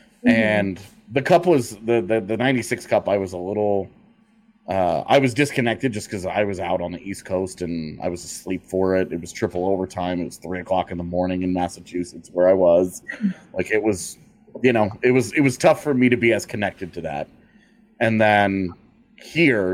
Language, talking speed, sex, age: English, 210 wpm, male, 30-49